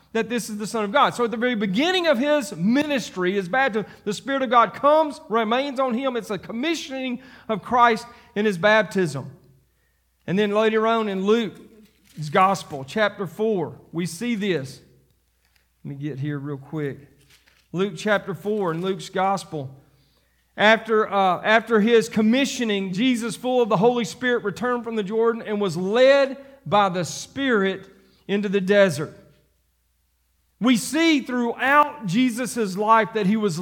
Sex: male